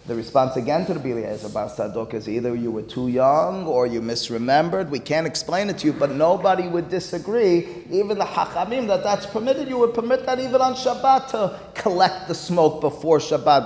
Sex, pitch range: male, 130-165 Hz